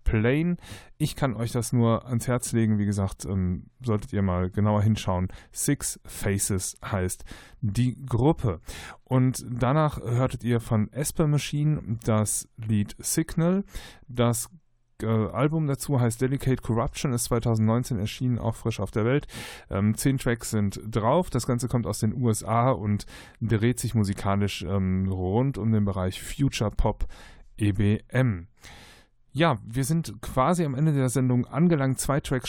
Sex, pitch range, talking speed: male, 105-130 Hz, 150 wpm